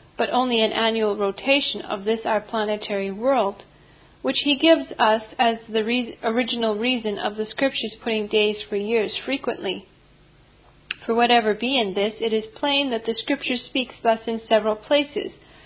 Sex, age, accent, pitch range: female, 40-59, American, 215-260 Hz